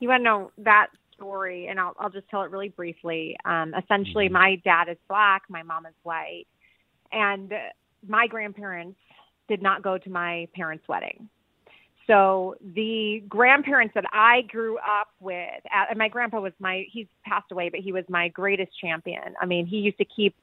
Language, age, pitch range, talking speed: English, 30-49, 190-235 Hz, 180 wpm